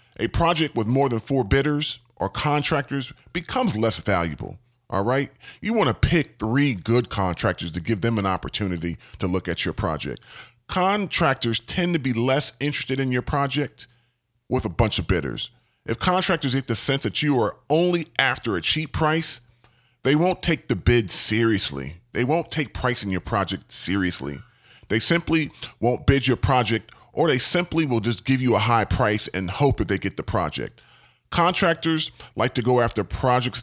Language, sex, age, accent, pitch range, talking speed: English, female, 40-59, American, 110-150 Hz, 180 wpm